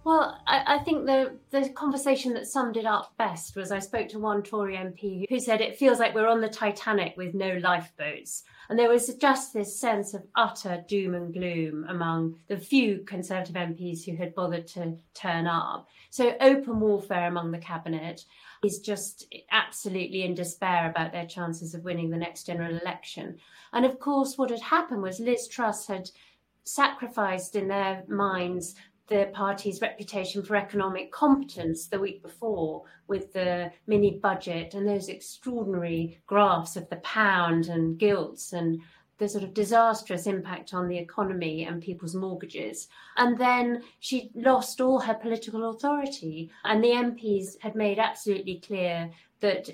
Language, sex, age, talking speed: English, female, 40-59, 165 wpm